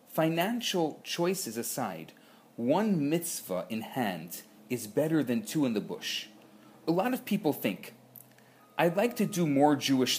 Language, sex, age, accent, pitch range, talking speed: English, male, 40-59, Canadian, 150-210 Hz, 145 wpm